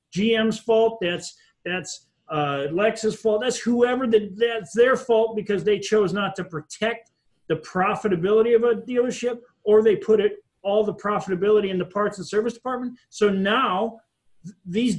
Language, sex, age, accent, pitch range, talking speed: English, male, 40-59, American, 180-235 Hz, 165 wpm